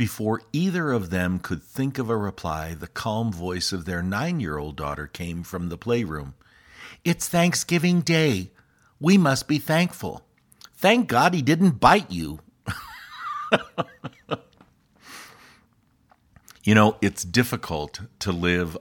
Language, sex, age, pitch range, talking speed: English, male, 50-69, 90-125 Hz, 125 wpm